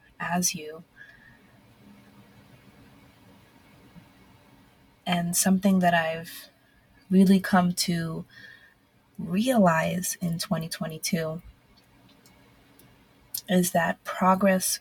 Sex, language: female, English